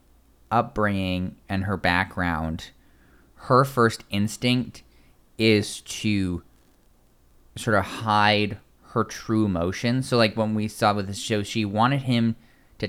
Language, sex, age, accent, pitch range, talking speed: English, male, 20-39, American, 90-115 Hz, 125 wpm